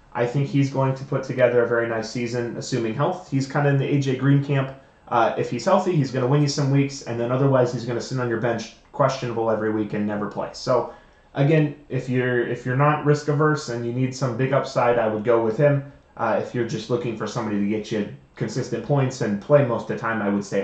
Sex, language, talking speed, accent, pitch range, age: male, English, 255 wpm, American, 115-145 Hz, 30-49